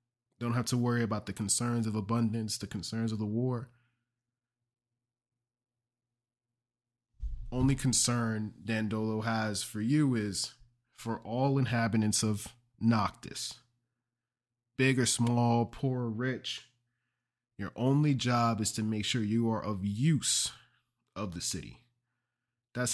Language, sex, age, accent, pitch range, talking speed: English, male, 20-39, American, 110-120 Hz, 125 wpm